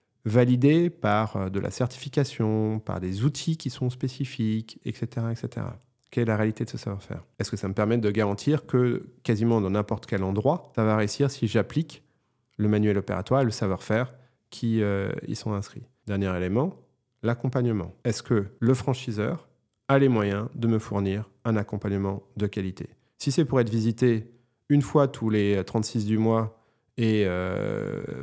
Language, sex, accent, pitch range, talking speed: French, male, French, 110-145 Hz, 170 wpm